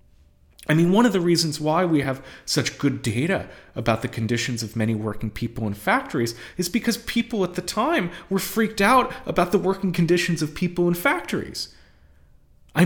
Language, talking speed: English, 180 wpm